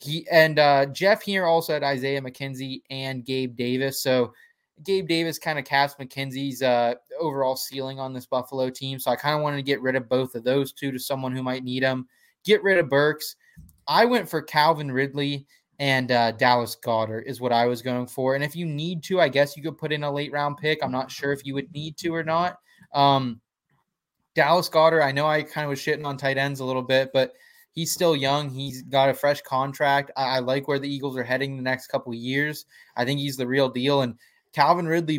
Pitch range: 125-145 Hz